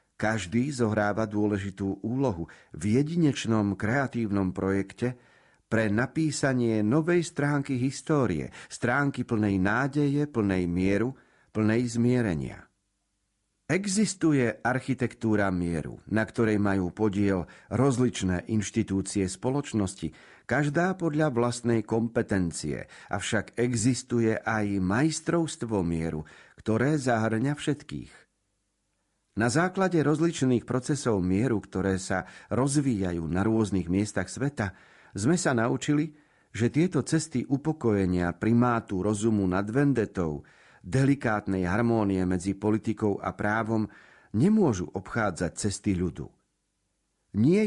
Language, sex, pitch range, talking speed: Slovak, male, 95-130 Hz, 95 wpm